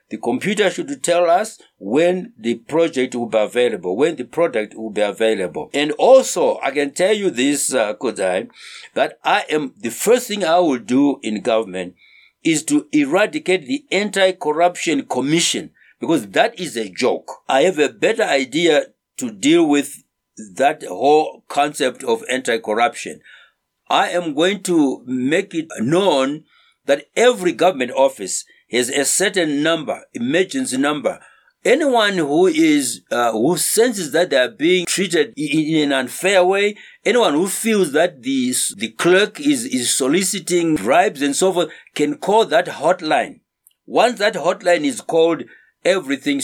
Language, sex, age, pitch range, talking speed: English, male, 60-79, 135-210 Hz, 150 wpm